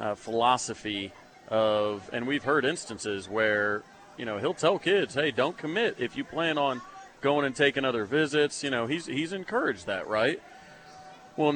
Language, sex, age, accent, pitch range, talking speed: English, male, 30-49, American, 110-140 Hz, 170 wpm